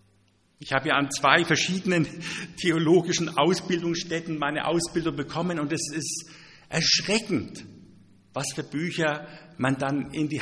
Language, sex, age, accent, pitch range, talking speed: German, male, 50-69, German, 125-175 Hz, 125 wpm